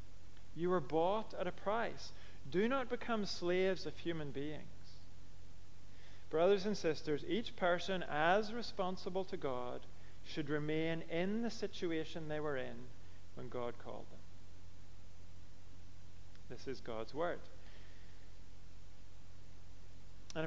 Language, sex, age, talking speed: English, male, 40-59, 115 wpm